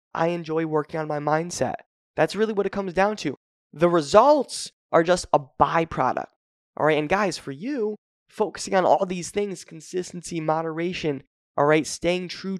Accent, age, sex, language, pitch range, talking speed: American, 20-39, male, English, 155-205 Hz, 170 wpm